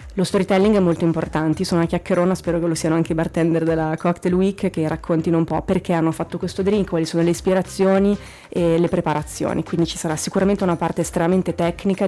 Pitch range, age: 160-185 Hz, 30-49